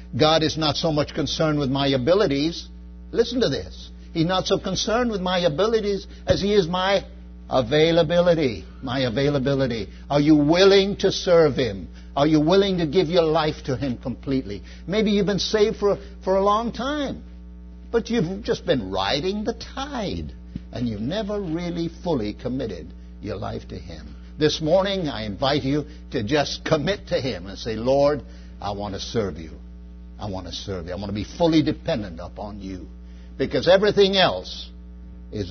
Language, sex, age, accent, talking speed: English, male, 60-79, American, 175 wpm